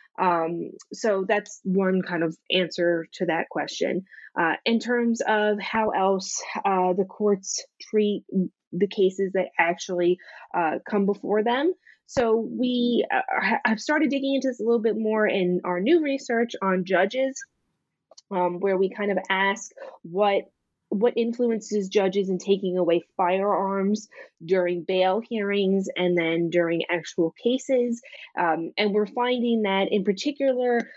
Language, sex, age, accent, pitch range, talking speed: English, female, 20-39, American, 180-225 Hz, 145 wpm